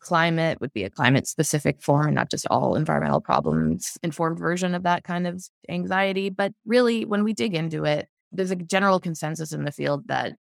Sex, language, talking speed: female, English, 200 wpm